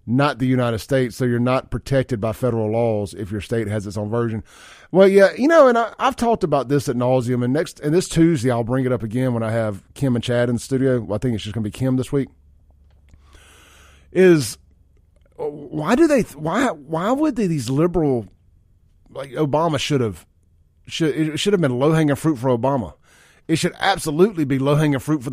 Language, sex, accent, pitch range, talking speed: English, male, American, 110-160 Hz, 215 wpm